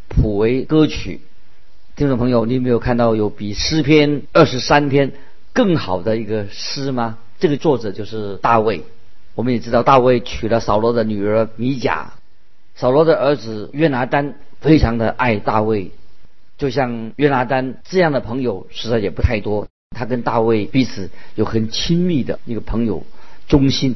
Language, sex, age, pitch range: Chinese, male, 50-69, 110-145 Hz